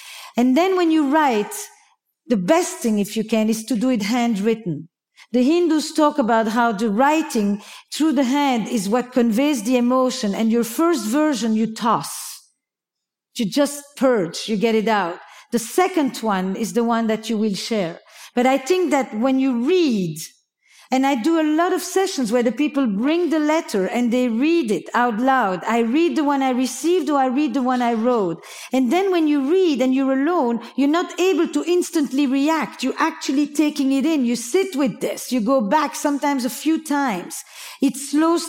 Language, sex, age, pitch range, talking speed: English, female, 50-69, 235-305 Hz, 195 wpm